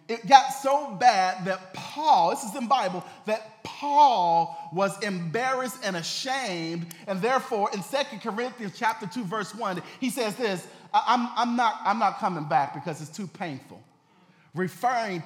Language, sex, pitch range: English, male, 180-240 Hz